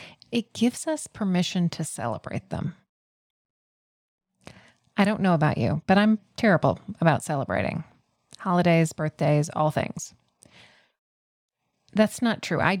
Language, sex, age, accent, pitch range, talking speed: English, female, 30-49, American, 150-200 Hz, 115 wpm